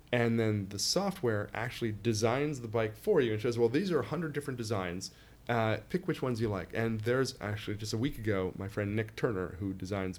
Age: 30-49